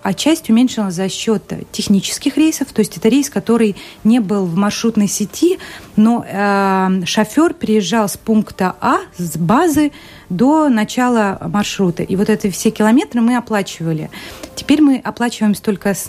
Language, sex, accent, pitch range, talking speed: Russian, female, native, 185-220 Hz, 155 wpm